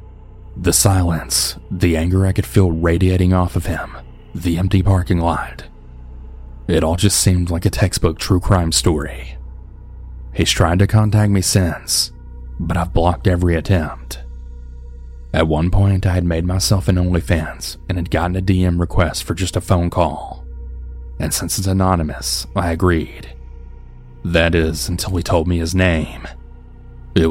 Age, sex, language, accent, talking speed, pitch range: 30-49, male, English, American, 155 wpm, 75-95 Hz